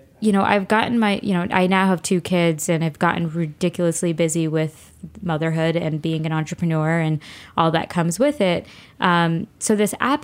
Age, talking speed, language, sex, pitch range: 20-39, 195 wpm, English, female, 165-195 Hz